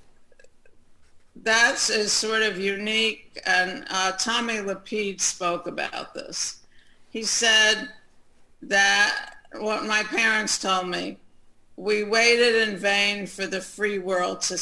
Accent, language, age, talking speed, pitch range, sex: American, English, 50-69, 120 wpm, 190-220 Hz, female